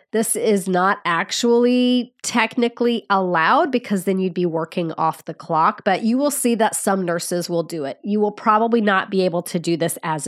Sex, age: female, 30-49